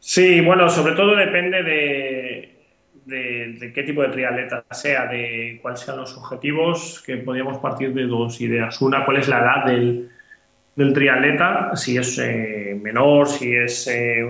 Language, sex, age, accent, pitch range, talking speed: Spanish, male, 20-39, Spanish, 120-140 Hz, 165 wpm